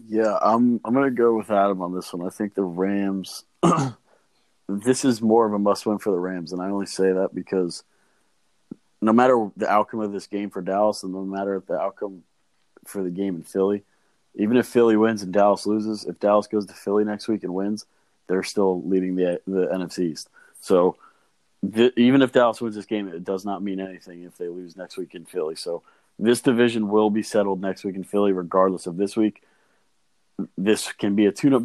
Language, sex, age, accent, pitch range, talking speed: English, male, 30-49, American, 95-110 Hz, 215 wpm